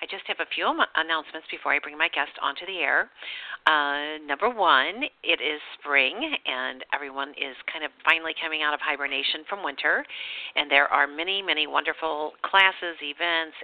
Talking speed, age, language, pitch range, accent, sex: 175 wpm, 50-69, English, 145-170 Hz, American, female